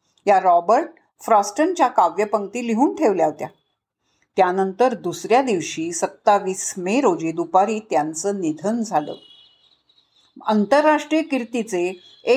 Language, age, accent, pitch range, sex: Marathi, 50-69, native, 205-300 Hz, female